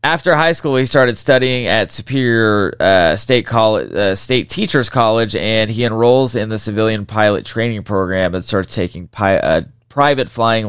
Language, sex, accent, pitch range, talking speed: English, male, American, 100-130 Hz, 175 wpm